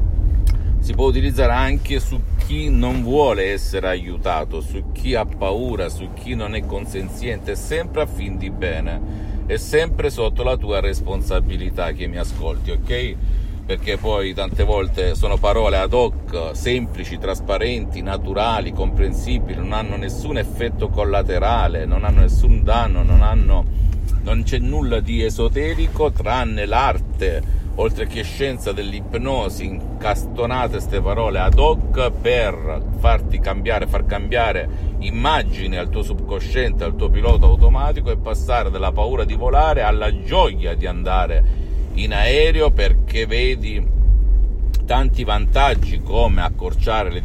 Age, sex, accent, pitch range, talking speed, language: 50-69, male, native, 85-105 Hz, 135 wpm, Italian